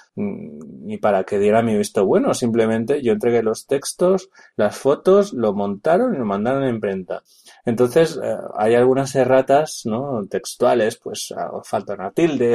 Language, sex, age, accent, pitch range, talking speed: English, male, 30-49, Spanish, 105-130 Hz, 155 wpm